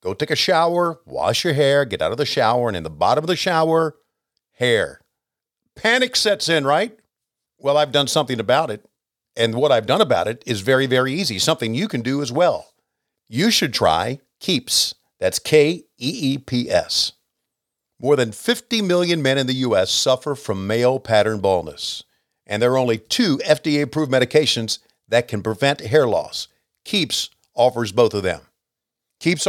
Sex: male